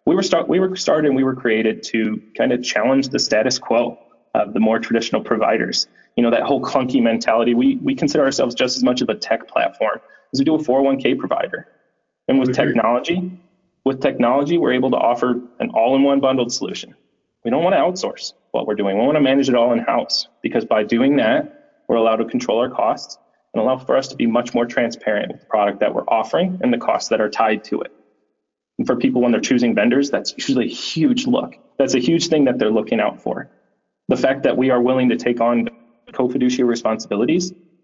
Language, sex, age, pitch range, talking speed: English, male, 30-49, 120-170 Hz, 215 wpm